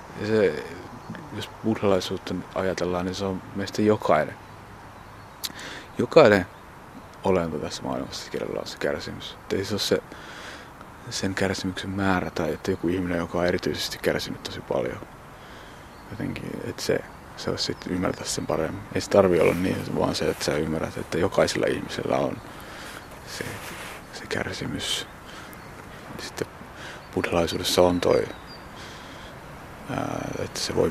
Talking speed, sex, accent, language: 130 wpm, male, native, Finnish